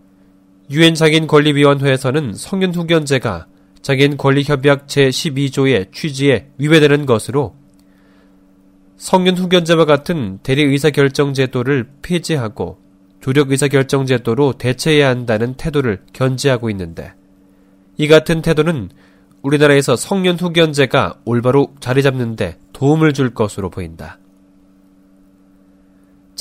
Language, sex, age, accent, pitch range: Korean, male, 20-39, native, 95-145 Hz